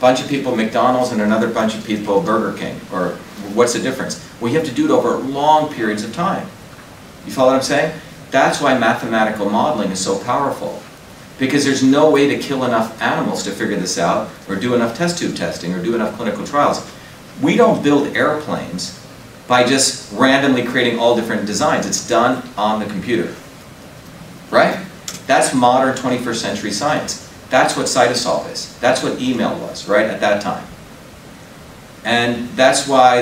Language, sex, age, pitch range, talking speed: English, male, 40-59, 110-135 Hz, 180 wpm